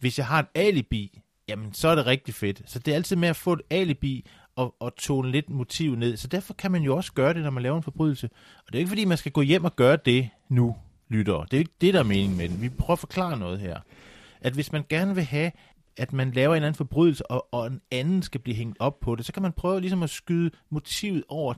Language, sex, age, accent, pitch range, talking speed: Danish, male, 30-49, native, 120-160 Hz, 285 wpm